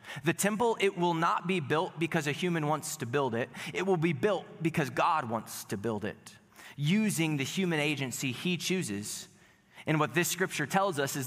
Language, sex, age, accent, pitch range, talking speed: English, male, 20-39, American, 140-200 Hz, 195 wpm